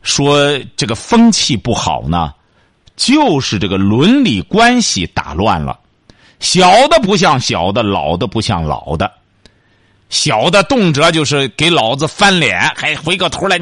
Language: Chinese